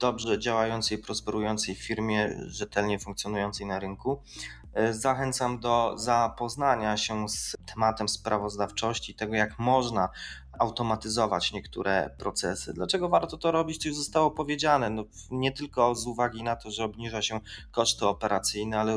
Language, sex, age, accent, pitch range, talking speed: Polish, male, 20-39, native, 105-125 Hz, 135 wpm